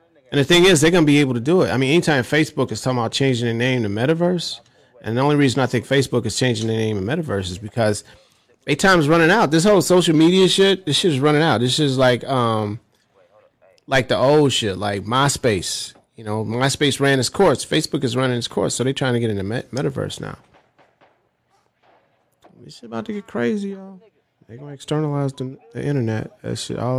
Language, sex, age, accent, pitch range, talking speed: English, male, 30-49, American, 110-150 Hz, 225 wpm